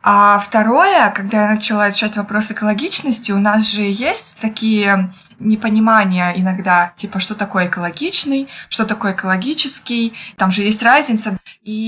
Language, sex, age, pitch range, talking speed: Russian, female, 20-39, 195-225 Hz, 135 wpm